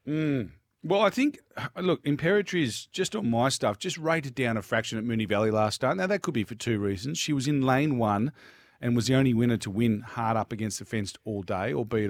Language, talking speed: English, 240 wpm